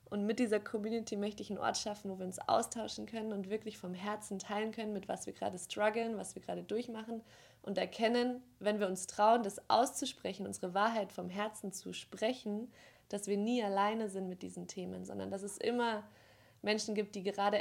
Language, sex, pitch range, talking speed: English, female, 190-220 Hz, 200 wpm